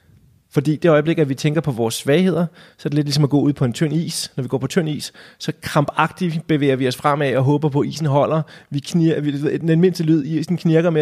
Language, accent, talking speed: Danish, native, 250 wpm